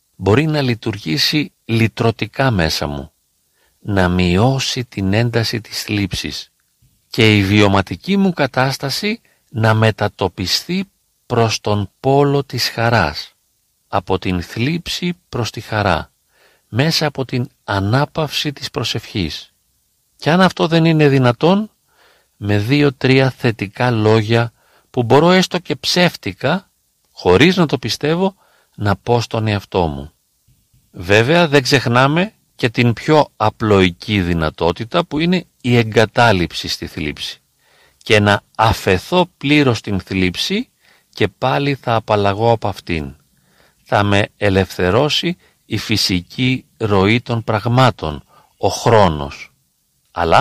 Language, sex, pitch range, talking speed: Greek, male, 100-145 Hz, 115 wpm